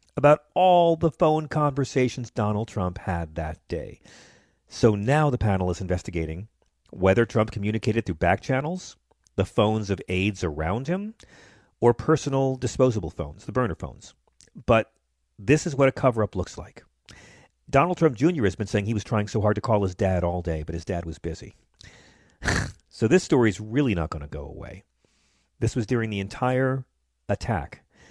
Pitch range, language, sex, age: 90-120 Hz, English, male, 40-59